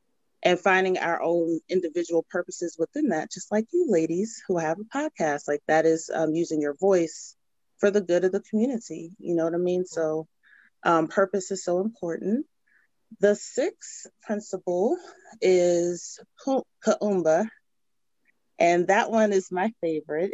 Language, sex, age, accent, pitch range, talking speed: English, female, 30-49, American, 160-195 Hz, 150 wpm